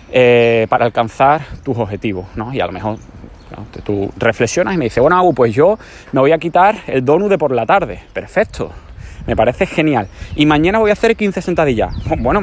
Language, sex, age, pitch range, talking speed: Spanish, male, 30-49, 100-155 Hz, 205 wpm